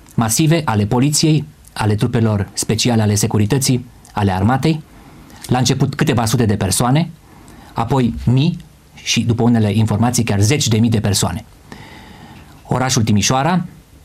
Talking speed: 130 wpm